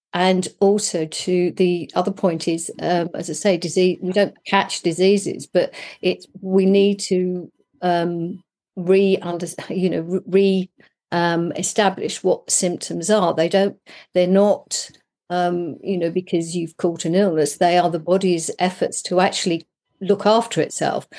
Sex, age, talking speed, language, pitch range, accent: female, 50-69, 150 wpm, English, 165-185 Hz, British